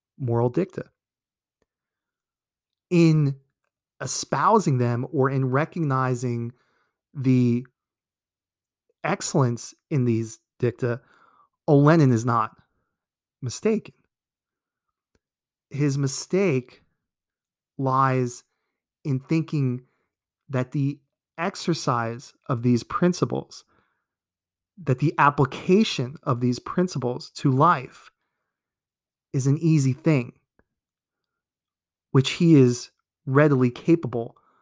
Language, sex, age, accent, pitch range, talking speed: English, male, 30-49, American, 120-150 Hz, 80 wpm